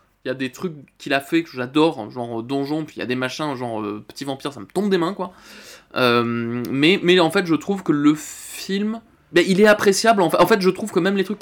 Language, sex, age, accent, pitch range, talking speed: French, male, 20-39, French, 140-180 Hz, 280 wpm